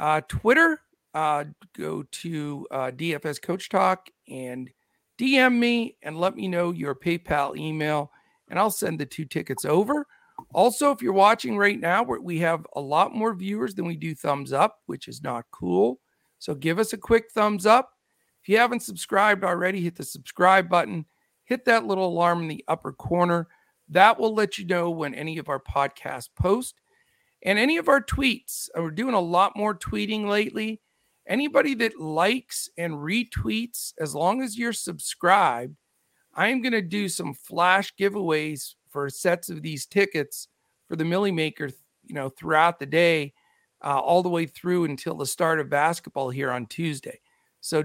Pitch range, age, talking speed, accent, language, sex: 155-220 Hz, 50-69, 175 wpm, American, English, male